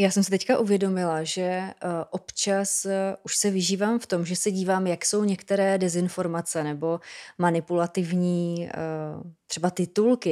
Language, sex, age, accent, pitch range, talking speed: Czech, female, 20-39, native, 175-205 Hz, 150 wpm